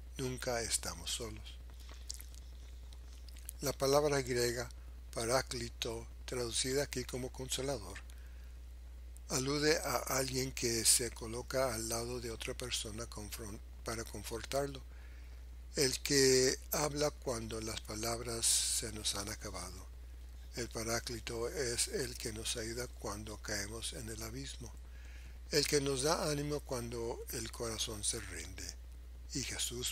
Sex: male